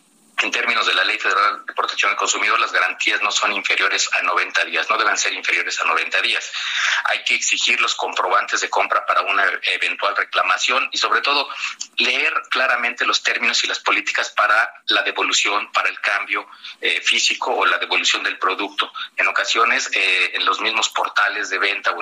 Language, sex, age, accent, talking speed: Spanish, male, 40-59, Mexican, 190 wpm